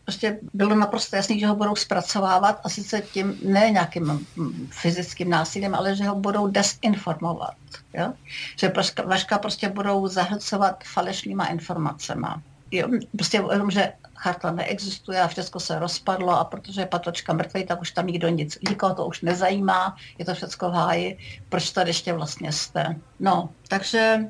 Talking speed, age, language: 155 wpm, 60-79, Czech